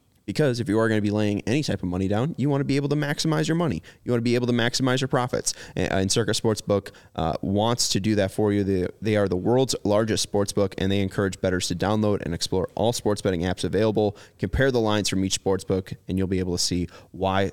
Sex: male